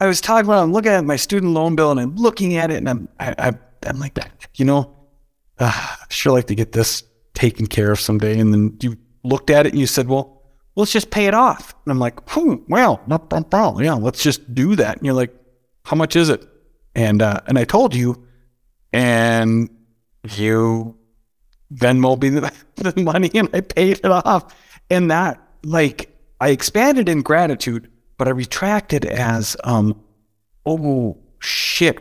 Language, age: English, 30-49